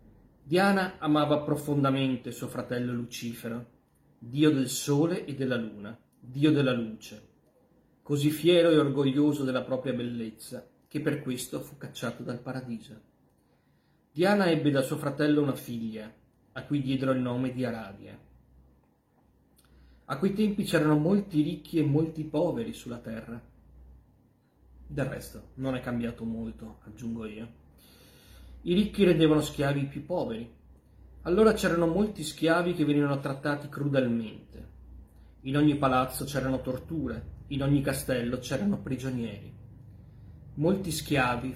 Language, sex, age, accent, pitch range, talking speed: Italian, male, 30-49, native, 115-150 Hz, 130 wpm